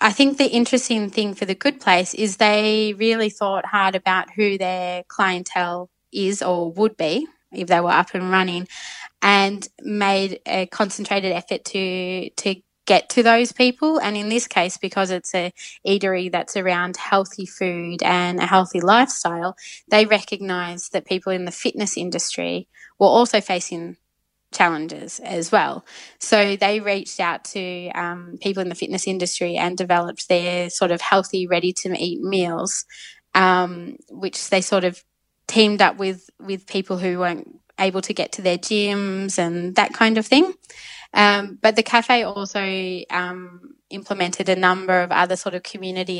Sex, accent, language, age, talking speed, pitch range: female, Australian, English, 20-39, 160 wpm, 180-205 Hz